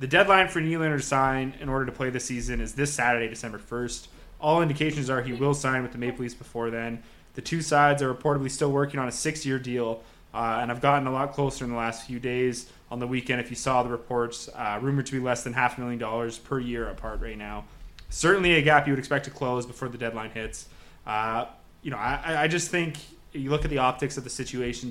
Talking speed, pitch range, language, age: 245 wpm, 120-140 Hz, English, 20-39